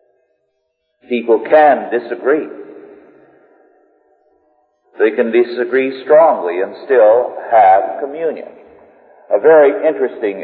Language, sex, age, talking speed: English, male, 50-69, 80 wpm